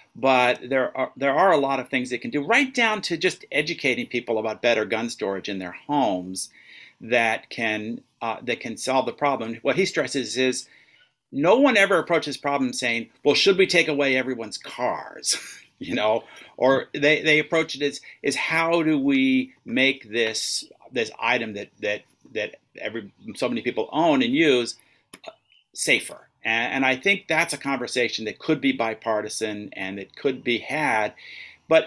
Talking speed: 175 wpm